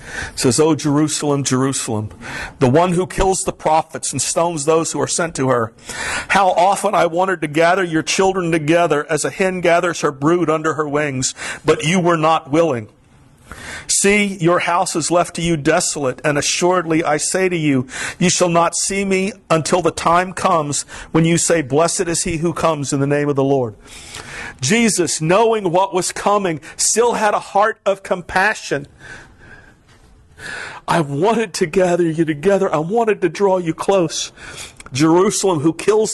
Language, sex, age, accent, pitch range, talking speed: English, male, 50-69, American, 155-185 Hz, 175 wpm